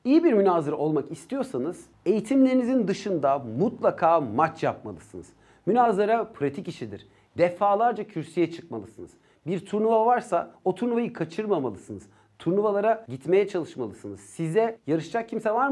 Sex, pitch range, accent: male, 150-225 Hz, native